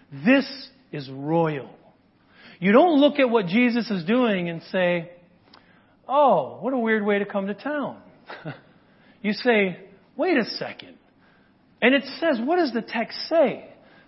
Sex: male